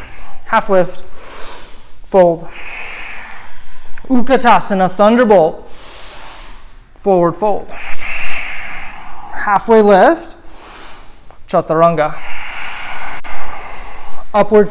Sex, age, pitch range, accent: male, 30-49, 180-230 Hz, American